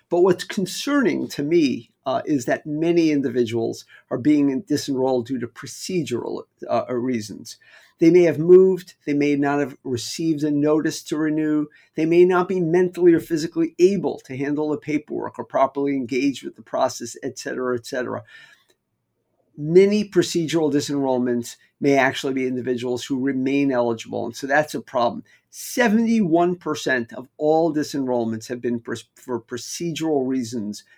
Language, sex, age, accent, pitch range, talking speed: English, male, 50-69, American, 130-165 Hz, 150 wpm